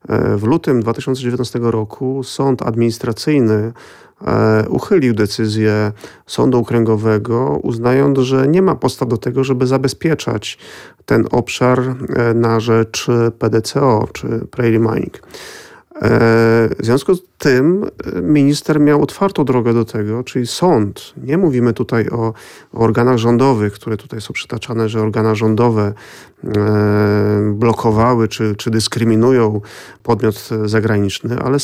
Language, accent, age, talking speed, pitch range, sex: Polish, native, 40-59, 110 wpm, 115-130 Hz, male